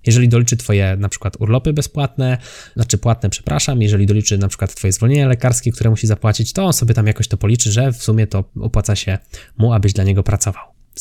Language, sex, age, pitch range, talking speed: Polish, male, 20-39, 105-130 Hz, 215 wpm